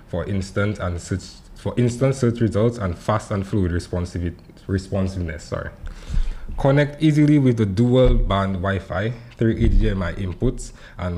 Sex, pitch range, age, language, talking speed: male, 95-115 Hz, 20-39, English, 145 wpm